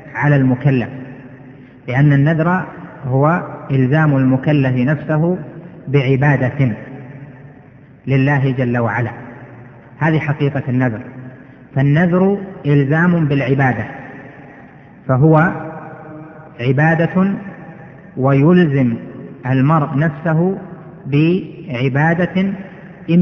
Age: 30-49